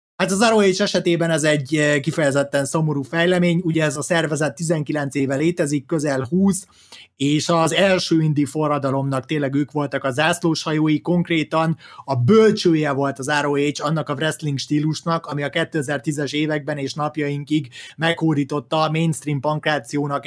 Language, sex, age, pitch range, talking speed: Hungarian, male, 30-49, 145-165 Hz, 140 wpm